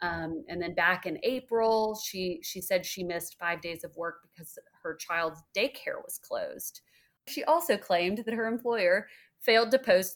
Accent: American